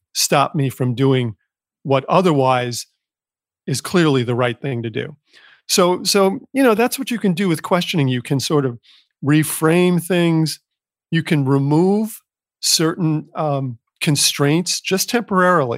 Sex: male